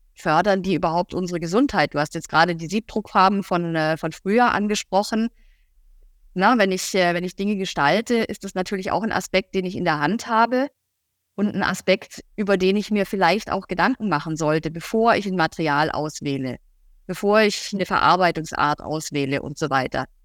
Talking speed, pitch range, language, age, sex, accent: 170 wpm, 170-210 Hz, German, 30-49, female, German